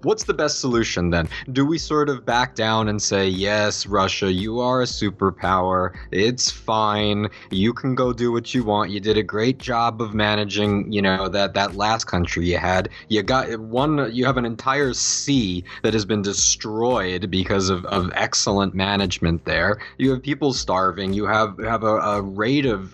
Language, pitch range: English, 100-135 Hz